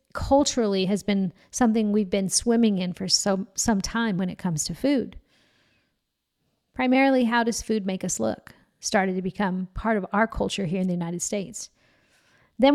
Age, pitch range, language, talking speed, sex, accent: 40-59, 200-245 Hz, English, 170 wpm, female, American